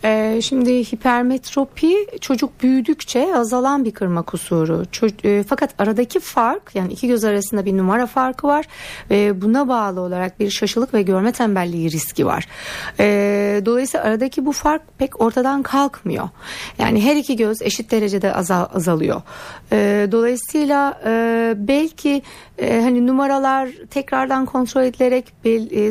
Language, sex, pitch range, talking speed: Turkish, female, 200-255 Hz, 140 wpm